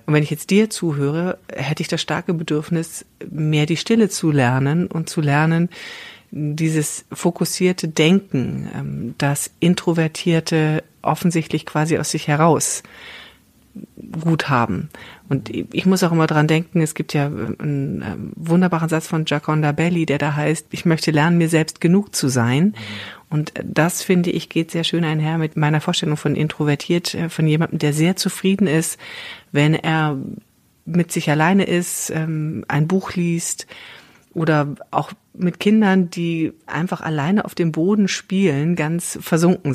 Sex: female